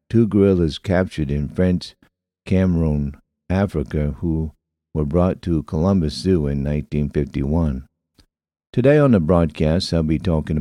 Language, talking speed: English, 125 wpm